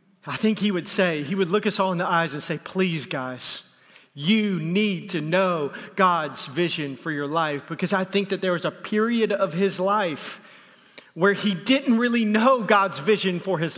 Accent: American